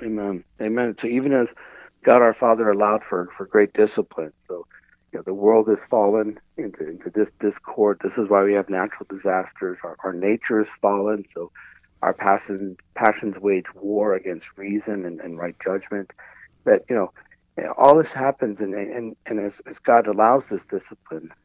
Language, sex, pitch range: English, male, 100-115 Hz